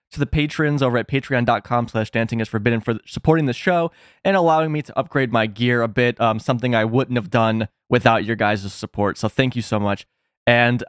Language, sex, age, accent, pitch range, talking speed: English, male, 20-39, American, 115-145 Hz, 215 wpm